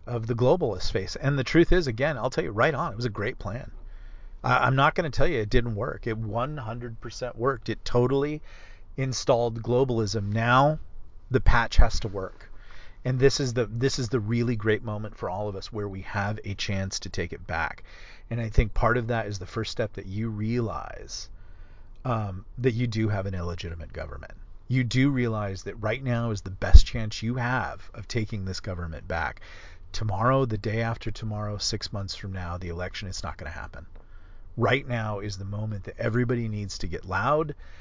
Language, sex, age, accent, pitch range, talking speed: English, male, 40-59, American, 90-120 Hz, 210 wpm